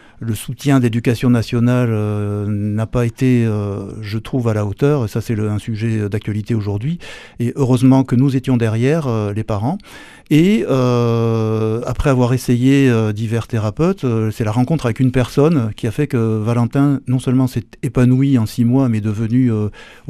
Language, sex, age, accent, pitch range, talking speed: French, male, 60-79, French, 110-135 Hz, 180 wpm